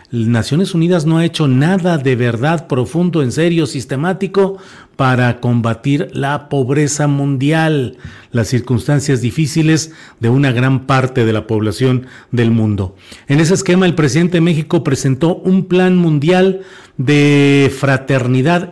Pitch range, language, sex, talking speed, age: 125-160 Hz, Spanish, male, 135 wpm, 40-59